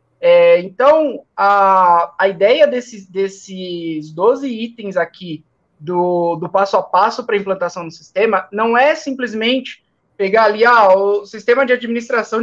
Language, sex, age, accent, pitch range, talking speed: Portuguese, male, 20-39, Brazilian, 195-250 Hz, 145 wpm